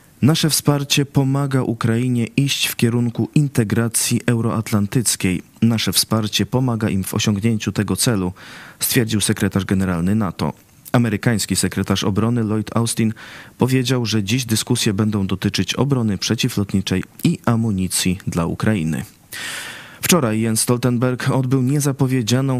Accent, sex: native, male